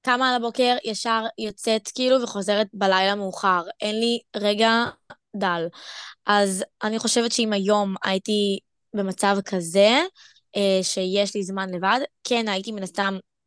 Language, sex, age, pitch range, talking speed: Hebrew, female, 20-39, 200-230 Hz, 130 wpm